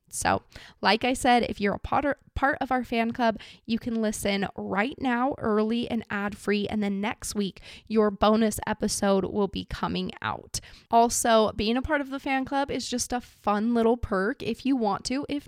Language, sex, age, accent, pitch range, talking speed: English, female, 20-39, American, 200-245 Hz, 200 wpm